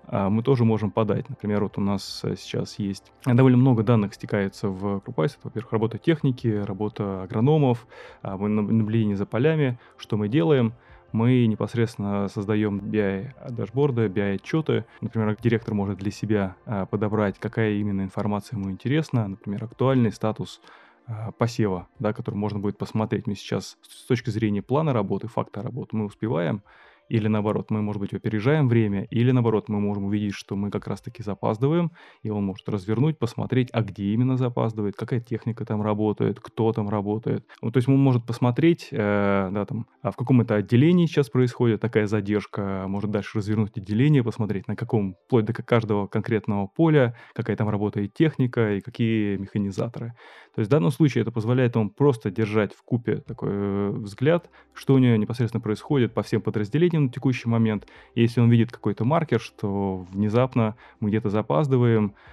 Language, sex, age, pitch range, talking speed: Russian, male, 20-39, 105-120 Hz, 160 wpm